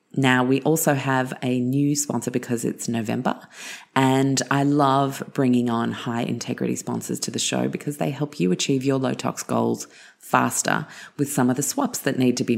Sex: female